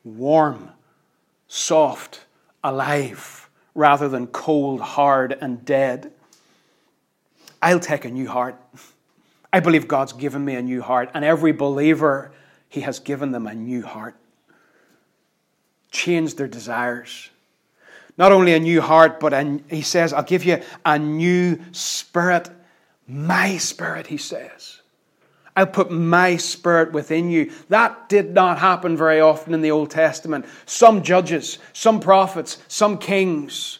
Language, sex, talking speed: English, male, 135 wpm